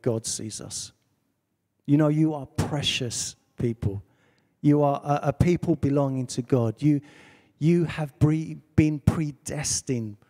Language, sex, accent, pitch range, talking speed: English, male, British, 125-165 Hz, 135 wpm